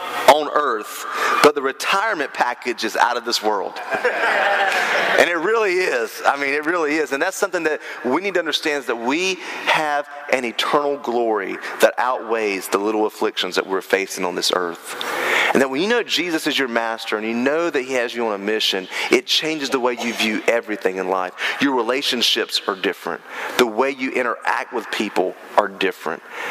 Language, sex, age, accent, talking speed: English, male, 30-49, American, 195 wpm